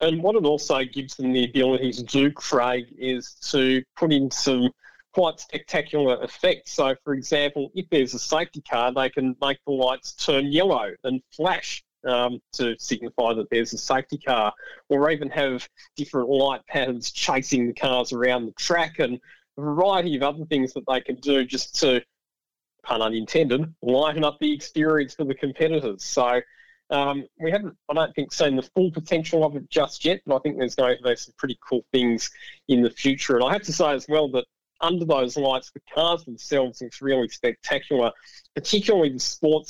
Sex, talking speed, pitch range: male, 190 wpm, 125-150 Hz